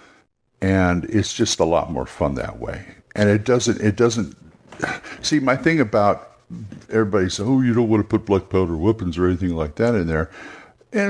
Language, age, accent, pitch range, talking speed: English, 60-79, American, 85-115 Hz, 190 wpm